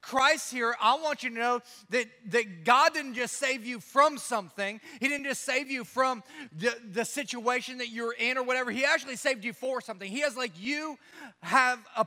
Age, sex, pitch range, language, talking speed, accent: 30-49, male, 225-270 Hz, English, 210 wpm, American